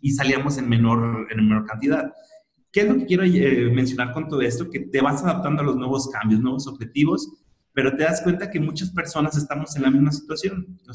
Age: 30-49